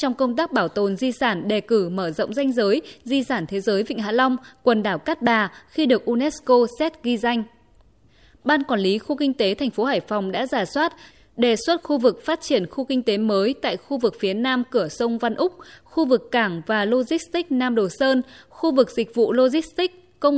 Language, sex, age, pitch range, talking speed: Vietnamese, female, 20-39, 215-275 Hz, 225 wpm